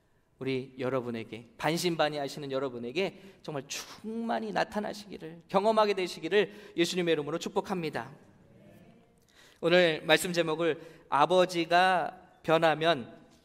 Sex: male